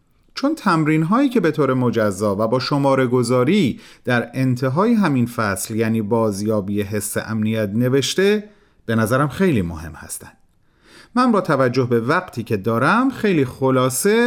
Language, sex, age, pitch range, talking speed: Persian, male, 40-59, 120-190 Hz, 145 wpm